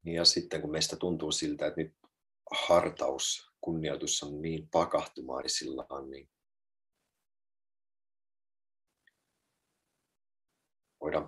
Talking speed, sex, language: 80 wpm, male, Finnish